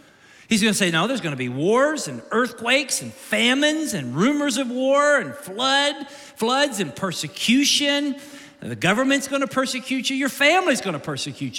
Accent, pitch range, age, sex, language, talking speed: American, 185-265 Hz, 40-59, male, English, 155 wpm